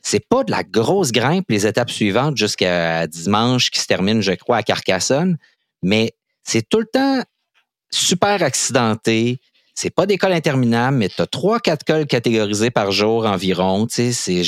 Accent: Canadian